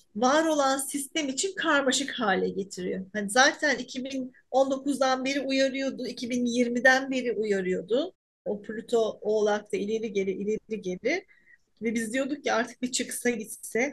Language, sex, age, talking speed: Turkish, female, 40-59, 130 wpm